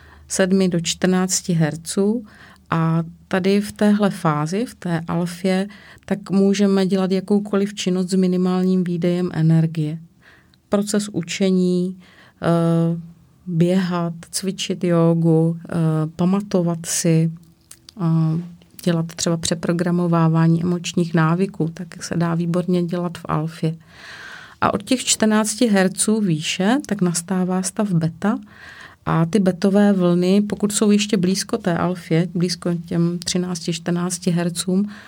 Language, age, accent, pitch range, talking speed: Czech, 30-49, native, 170-195 Hz, 110 wpm